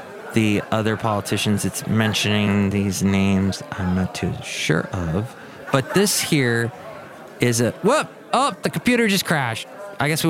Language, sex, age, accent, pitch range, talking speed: English, male, 30-49, American, 110-140 Hz, 150 wpm